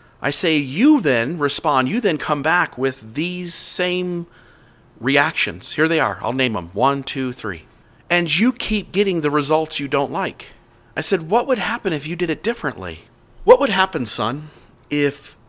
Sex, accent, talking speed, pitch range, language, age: male, American, 180 wpm, 115-155 Hz, English, 40-59